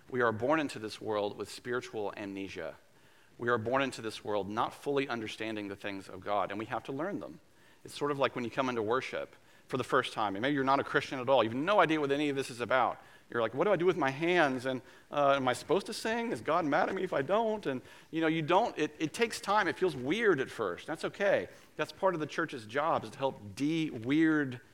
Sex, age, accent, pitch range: male, 40-59, American, 125-155 Hz